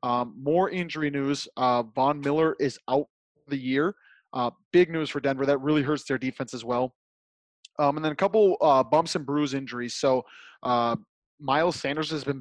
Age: 20-39